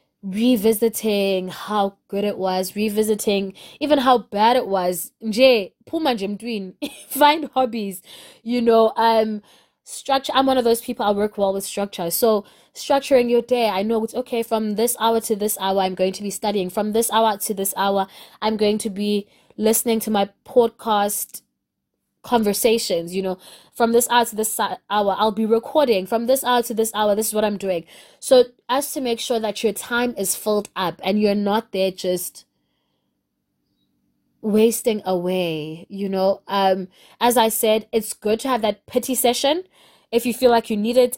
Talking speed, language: 180 wpm, English